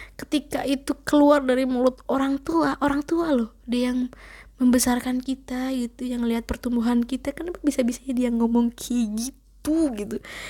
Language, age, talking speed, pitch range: Indonesian, 20-39, 150 wpm, 225-280 Hz